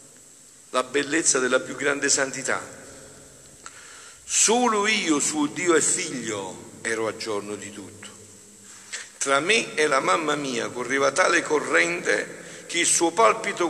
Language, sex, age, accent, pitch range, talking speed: Italian, male, 50-69, native, 110-165 Hz, 130 wpm